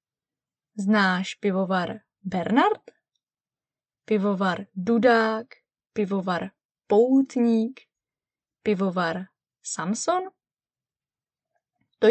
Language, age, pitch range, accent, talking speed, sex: Czech, 20-39, 180-250 Hz, native, 50 wpm, female